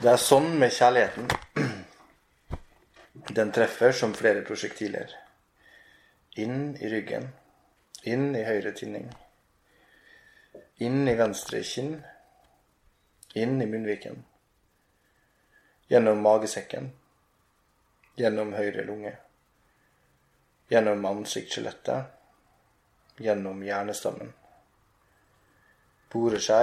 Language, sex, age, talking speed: English, male, 30-49, 70 wpm